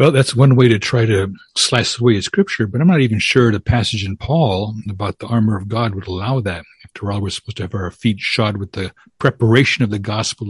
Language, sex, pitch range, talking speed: English, male, 100-125 Hz, 245 wpm